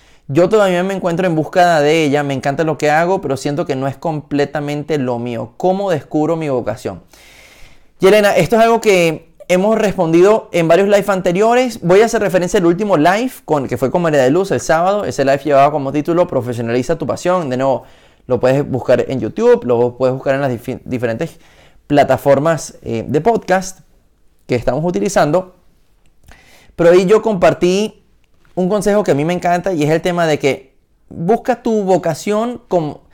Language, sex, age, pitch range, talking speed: Spanish, male, 30-49, 140-190 Hz, 185 wpm